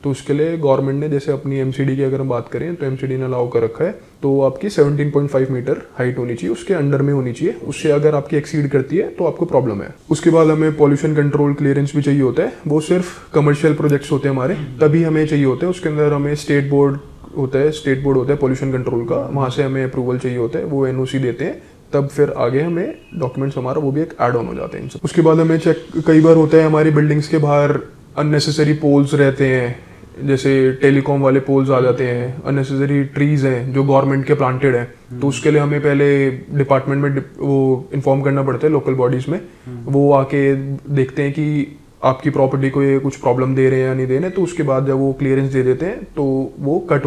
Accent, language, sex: native, Hindi, male